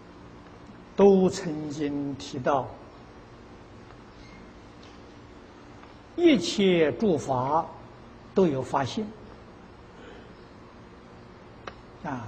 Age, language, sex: 60-79, Chinese, male